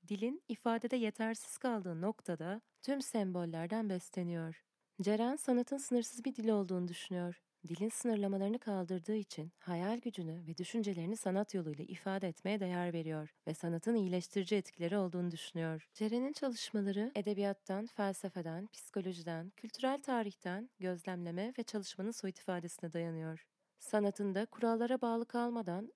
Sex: female